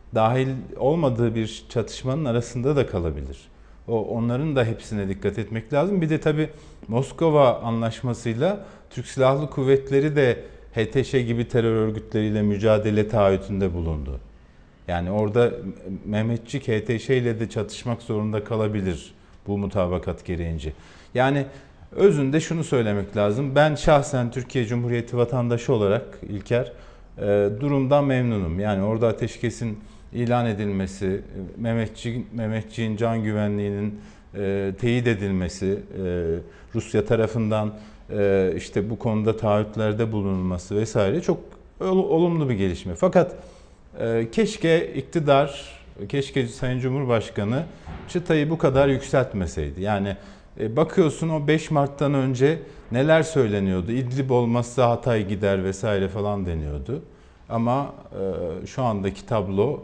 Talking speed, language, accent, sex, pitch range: 115 wpm, Turkish, native, male, 100-135 Hz